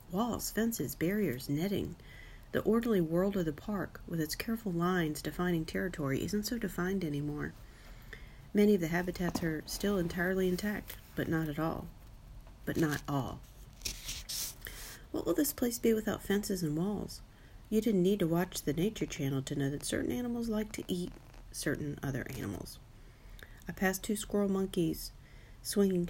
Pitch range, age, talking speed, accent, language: 145-195 Hz, 40-59, 160 wpm, American, English